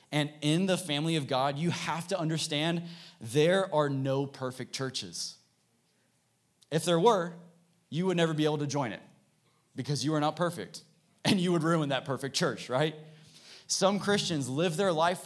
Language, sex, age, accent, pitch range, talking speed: English, male, 20-39, American, 135-170 Hz, 175 wpm